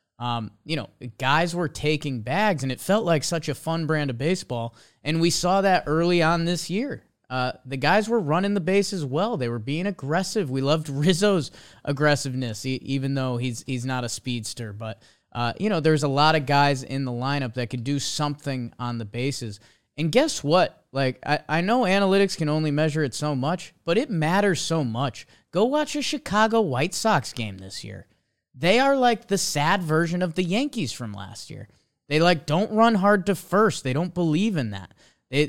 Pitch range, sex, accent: 130-185 Hz, male, American